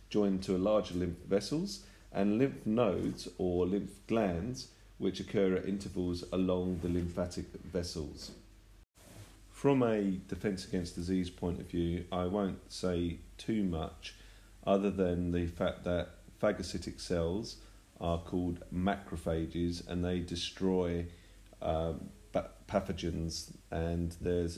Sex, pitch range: male, 85-100 Hz